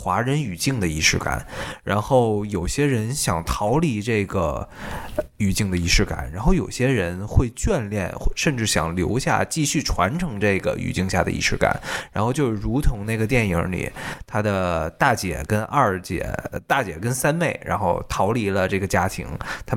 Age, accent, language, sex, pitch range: 20-39, native, Chinese, male, 90-120 Hz